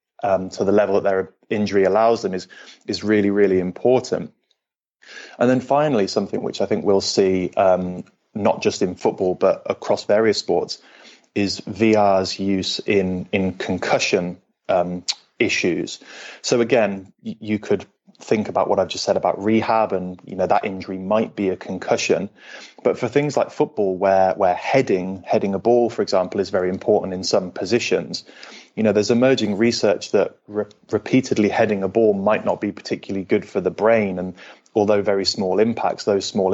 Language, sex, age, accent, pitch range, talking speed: English, male, 20-39, British, 95-110 Hz, 175 wpm